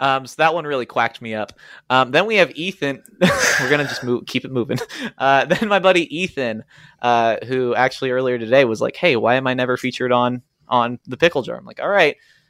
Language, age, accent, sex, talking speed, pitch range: English, 20-39, American, male, 230 wpm, 120-155 Hz